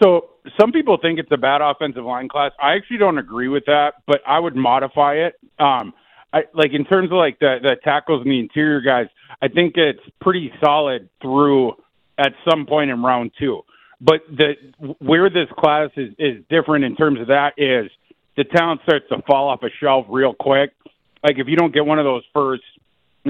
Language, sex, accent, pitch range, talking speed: English, male, American, 135-155 Hz, 205 wpm